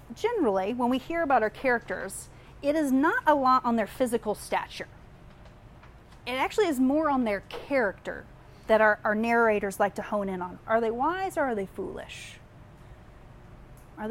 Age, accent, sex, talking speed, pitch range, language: 30-49, American, female, 170 wpm, 210-280 Hz, English